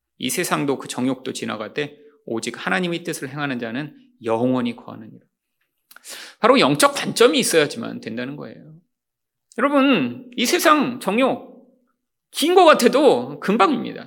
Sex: male